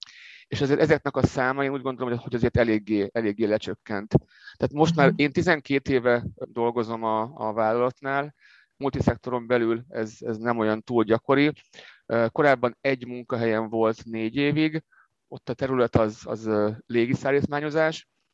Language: Hungarian